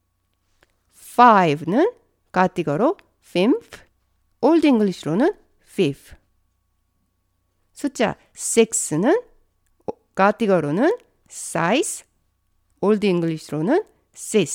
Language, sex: Korean, female